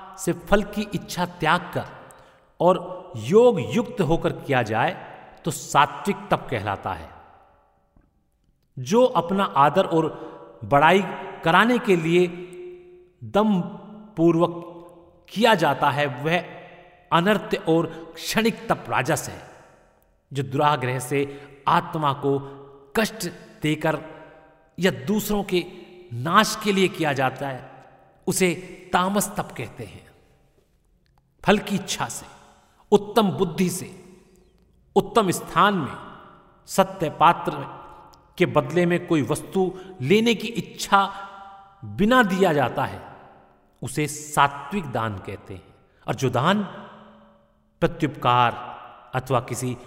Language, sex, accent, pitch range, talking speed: Hindi, male, native, 125-185 Hz, 110 wpm